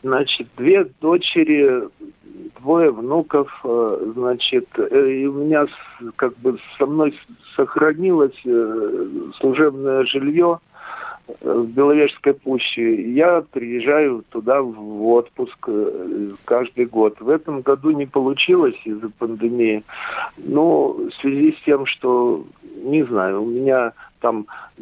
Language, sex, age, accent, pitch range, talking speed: Russian, male, 50-69, native, 120-200 Hz, 105 wpm